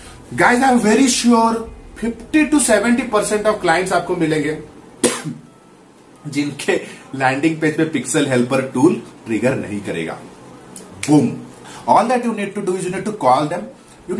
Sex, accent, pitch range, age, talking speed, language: male, native, 135-210 Hz, 30-49, 85 wpm, Hindi